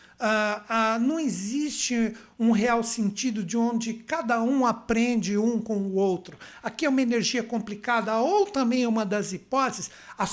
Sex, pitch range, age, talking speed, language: male, 190-250 Hz, 60-79, 155 wpm, Portuguese